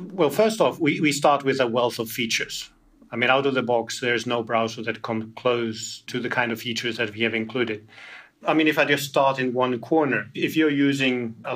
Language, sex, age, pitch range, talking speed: English, male, 40-59, 120-135 Hz, 235 wpm